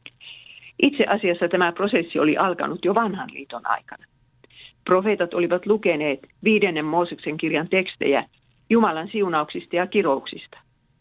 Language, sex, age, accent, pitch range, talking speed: Finnish, female, 50-69, native, 150-205 Hz, 115 wpm